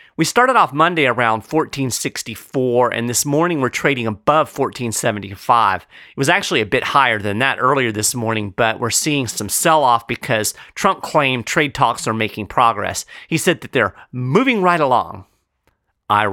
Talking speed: 170 wpm